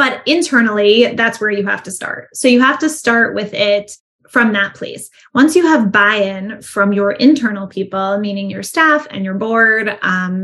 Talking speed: 190 wpm